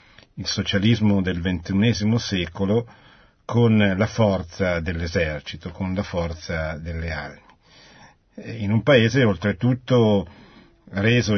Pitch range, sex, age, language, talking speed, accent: 90-115 Hz, male, 50-69, Italian, 100 wpm, native